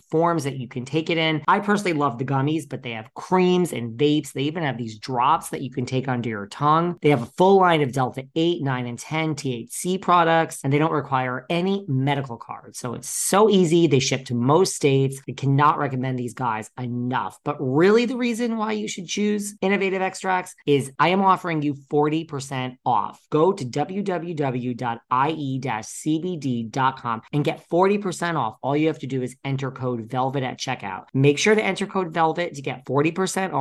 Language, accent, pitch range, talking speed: English, American, 125-165 Hz, 195 wpm